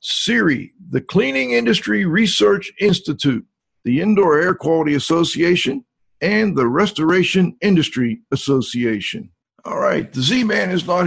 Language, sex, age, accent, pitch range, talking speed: English, male, 50-69, American, 145-185 Hz, 125 wpm